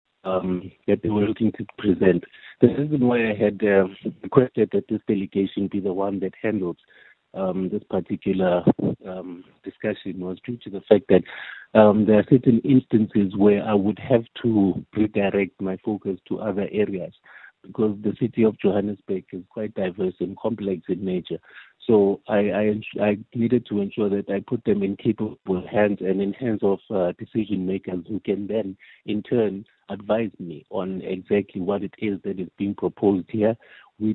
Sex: male